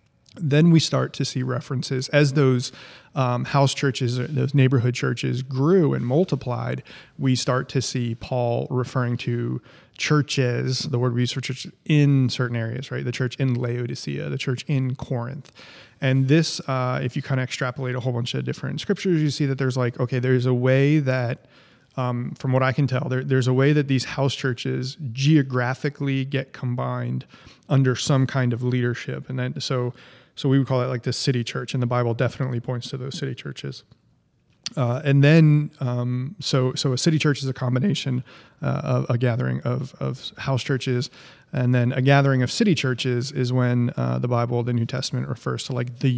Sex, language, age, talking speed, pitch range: male, English, 30-49, 190 wpm, 125-135 Hz